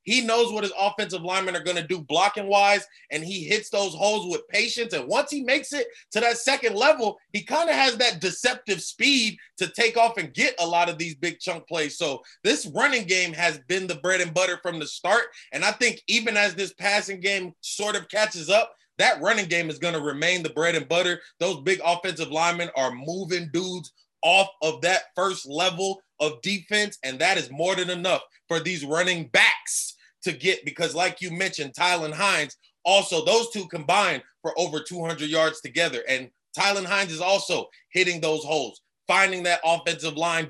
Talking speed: 200 wpm